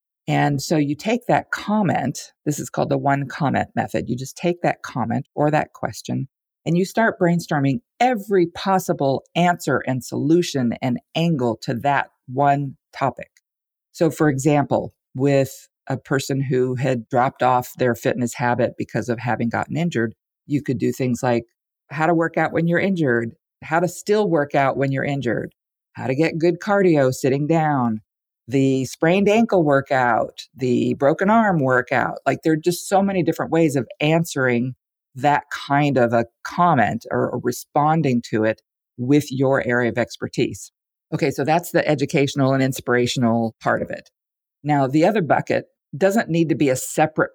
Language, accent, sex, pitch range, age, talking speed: English, American, female, 125-165 Hz, 40-59, 170 wpm